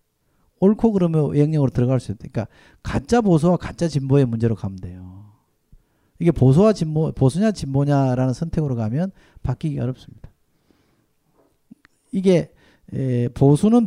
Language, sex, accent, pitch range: Korean, male, native, 125-160 Hz